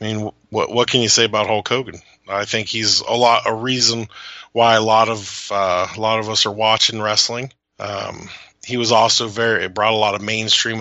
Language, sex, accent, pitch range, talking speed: English, male, American, 100-115 Hz, 220 wpm